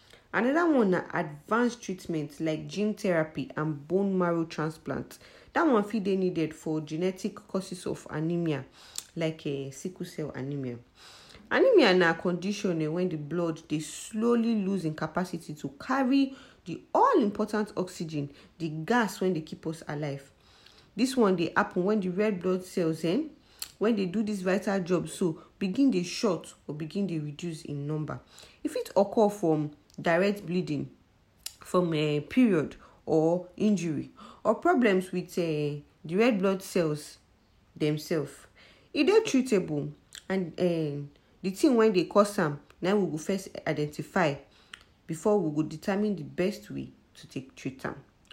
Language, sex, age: English, female, 40-59